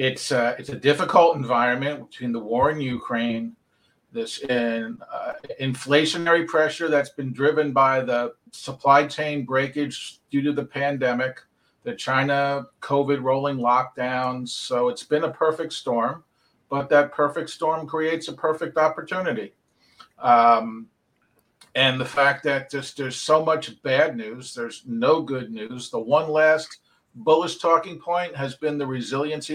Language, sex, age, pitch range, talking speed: English, male, 50-69, 130-155 Hz, 145 wpm